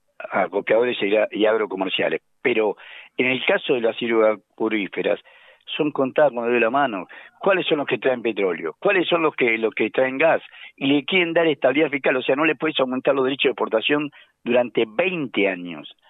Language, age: Spanish, 50-69